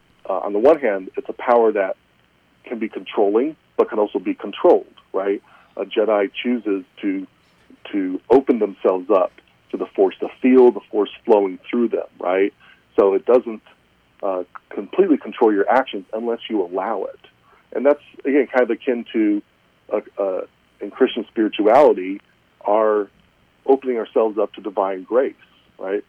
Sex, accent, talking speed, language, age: male, American, 160 wpm, English, 40-59